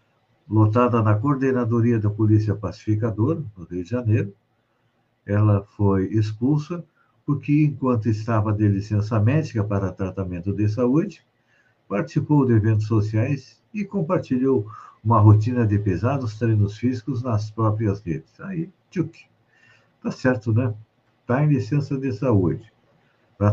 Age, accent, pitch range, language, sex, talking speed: 60-79, Brazilian, 105-130 Hz, Portuguese, male, 125 wpm